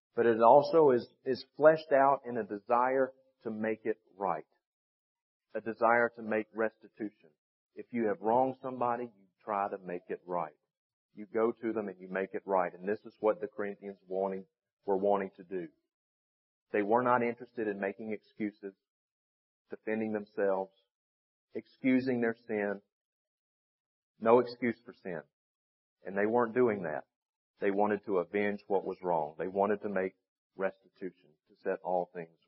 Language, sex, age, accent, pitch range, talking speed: English, male, 40-59, American, 95-115 Hz, 160 wpm